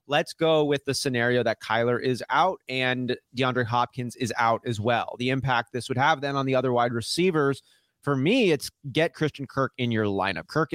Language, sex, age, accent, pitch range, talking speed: English, male, 30-49, American, 125-155 Hz, 205 wpm